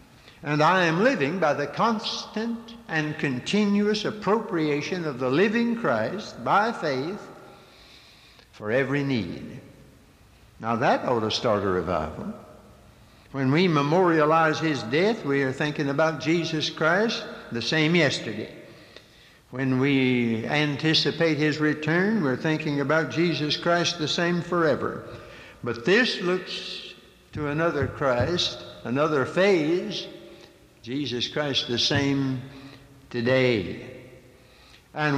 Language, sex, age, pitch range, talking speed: English, male, 60-79, 125-170 Hz, 115 wpm